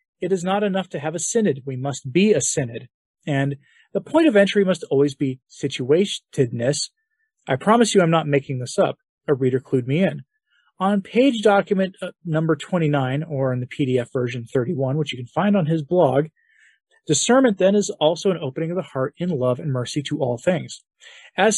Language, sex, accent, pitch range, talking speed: English, male, American, 140-190 Hz, 195 wpm